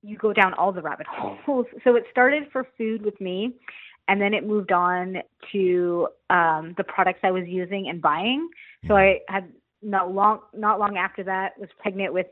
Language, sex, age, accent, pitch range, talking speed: English, female, 30-49, American, 185-225 Hz, 195 wpm